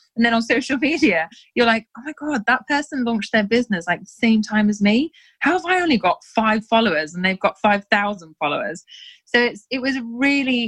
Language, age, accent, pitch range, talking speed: English, 20-39, British, 185-245 Hz, 215 wpm